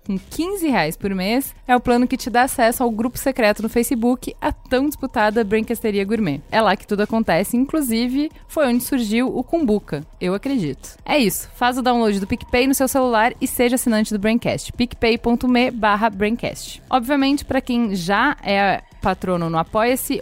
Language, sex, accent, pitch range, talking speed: Portuguese, female, Brazilian, 205-265 Hz, 180 wpm